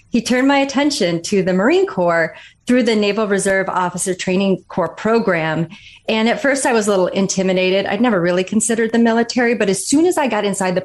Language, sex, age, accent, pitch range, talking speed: English, female, 30-49, American, 180-215 Hz, 210 wpm